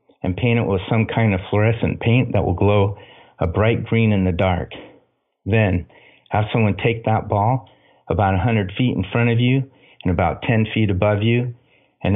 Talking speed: 190 wpm